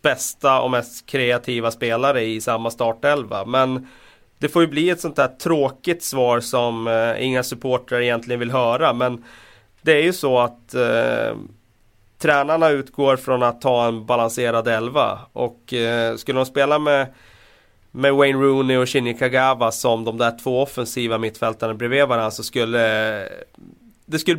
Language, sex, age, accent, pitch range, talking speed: Swedish, male, 30-49, native, 115-140 Hz, 160 wpm